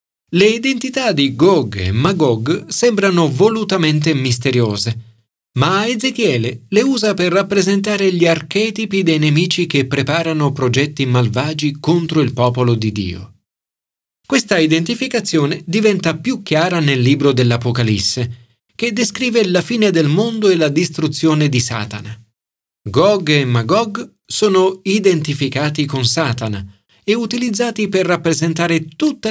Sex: male